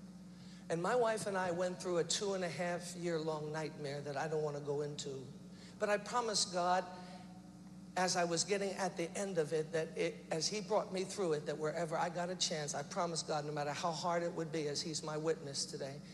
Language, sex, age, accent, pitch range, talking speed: English, male, 60-79, American, 150-180 Hz, 220 wpm